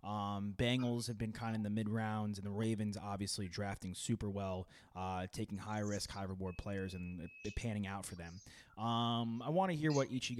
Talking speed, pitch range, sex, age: 200 wpm, 100-120 Hz, male, 20-39